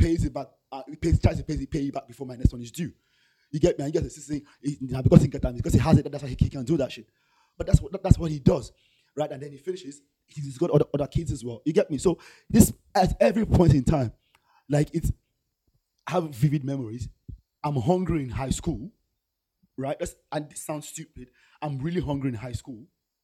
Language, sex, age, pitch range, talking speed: English, male, 30-49, 125-160 Hz, 240 wpm